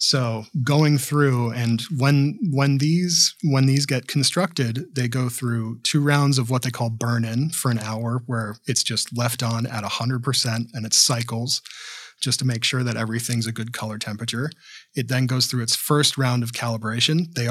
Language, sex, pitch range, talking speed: English, male, 115-140 Hz, 185 wpm